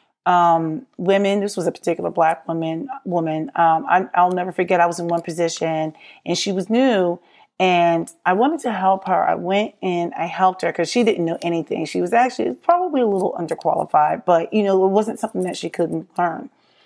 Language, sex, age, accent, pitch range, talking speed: English, female, 30-49, American, 170-225 Hz, 205 wpm